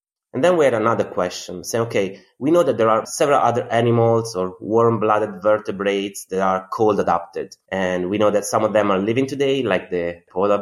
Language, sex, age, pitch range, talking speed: English, male, 20-39, 100-125 Hz, 205 wpm